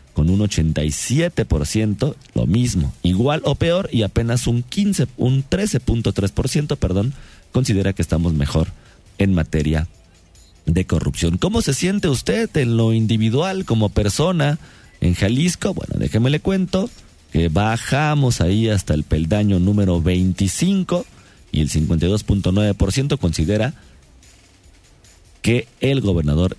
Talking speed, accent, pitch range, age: 120 wpm, Mexican, 85-130 Hz, 40-59